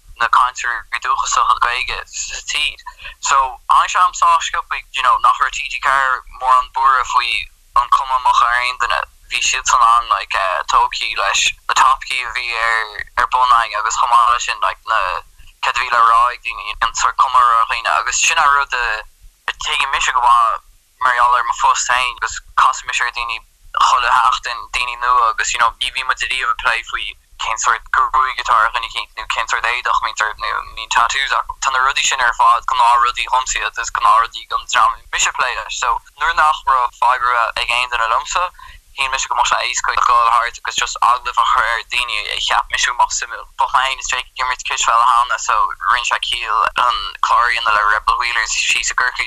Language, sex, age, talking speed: English, male, 10-29, 100 wpm